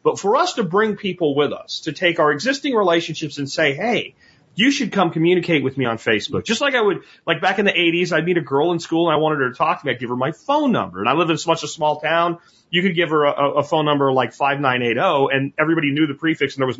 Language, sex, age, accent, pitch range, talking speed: English, male, 30-49, American, 140-185 Hz, 280 wpm